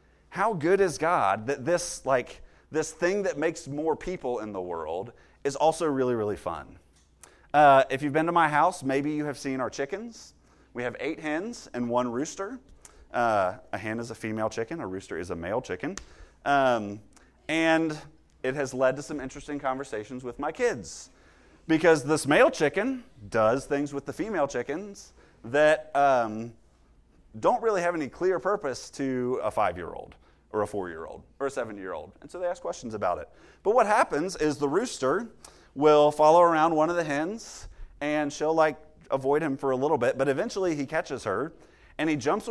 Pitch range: 125-160 Hz